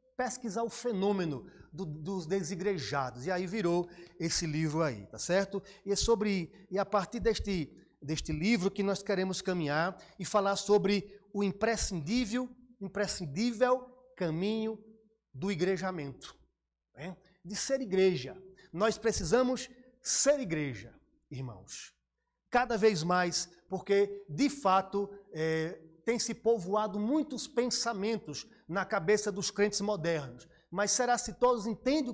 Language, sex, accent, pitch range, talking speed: Portuguese, male, Brazilian, 175-225 Hz, 125 wpm